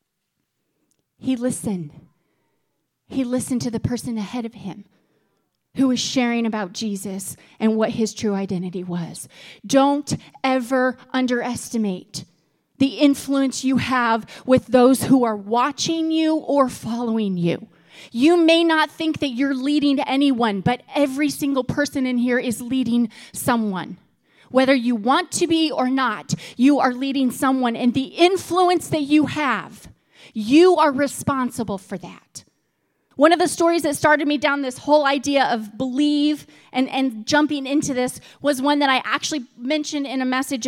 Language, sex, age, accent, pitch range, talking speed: English, female, 30-49, American, 230-285 Hz, 150 wpm